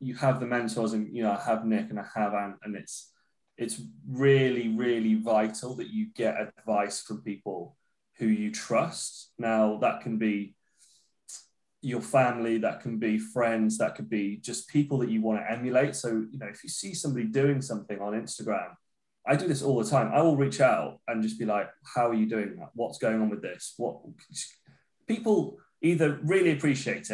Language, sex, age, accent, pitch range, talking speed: English, male, 20-39, British, 110-135 Hz, 195 wpm